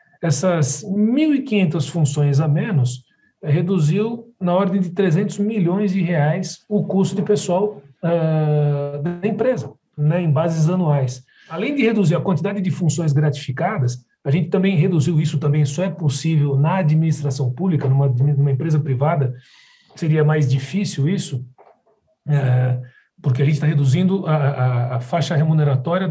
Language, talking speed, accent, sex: Portuguese, 140 wpm, Brazilian, male